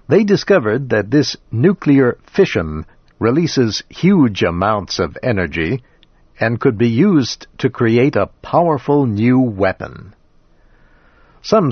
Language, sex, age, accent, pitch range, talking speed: English, male, 60-79, American, 100-130 Hz, 115 wpm